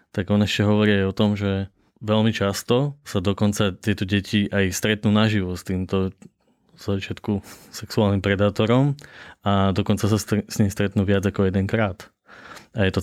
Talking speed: 160 wpm